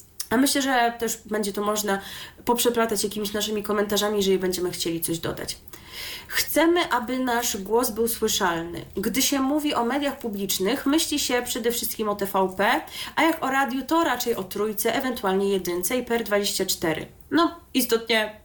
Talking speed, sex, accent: 160 wpm, female, native